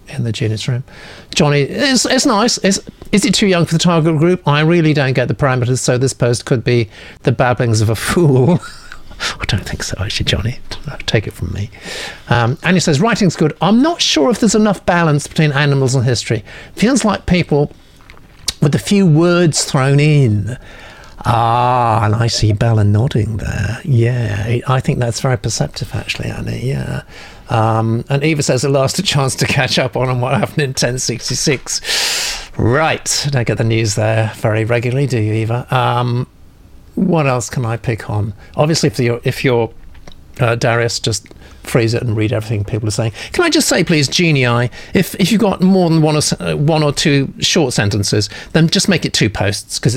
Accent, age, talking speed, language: British, 50-69, 195 wpm, English